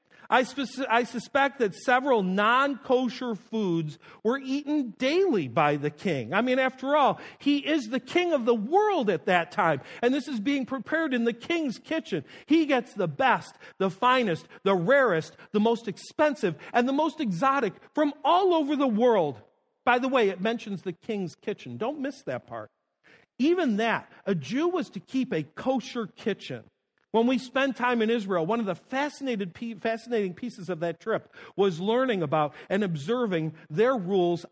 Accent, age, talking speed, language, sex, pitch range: American, 50-69, 170 wpm, English, male, 190-270 Hz